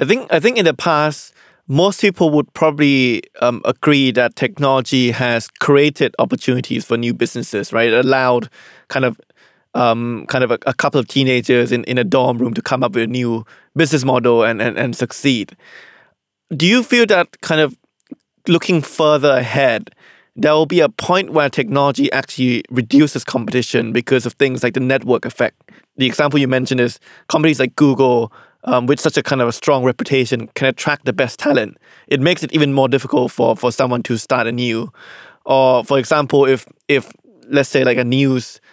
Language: Thai